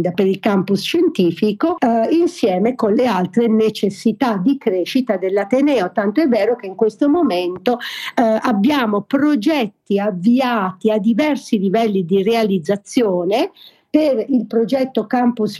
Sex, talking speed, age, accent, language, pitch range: female, 125 wpm, 50-69, native, Italian, 195-250 Hz